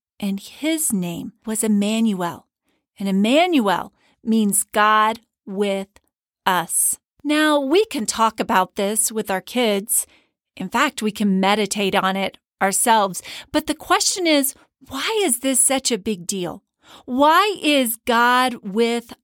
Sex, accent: female, American